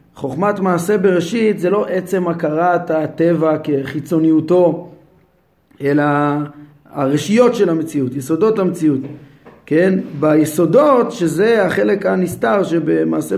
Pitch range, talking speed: 155-205 Hz, 95 wpm